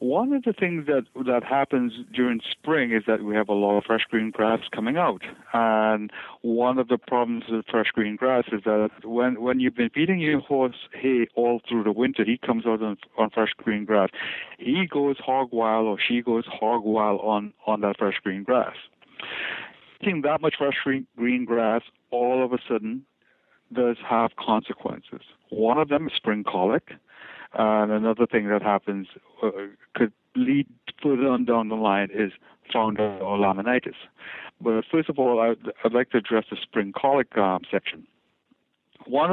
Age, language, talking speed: 60-79, English, 180 wpm